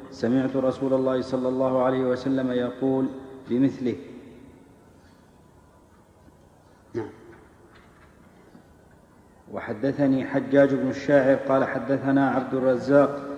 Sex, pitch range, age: male, 130-135 Hz, 50-69